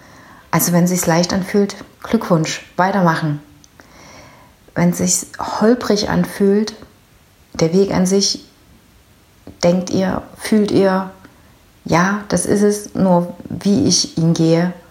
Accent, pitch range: German, 155-185 Hz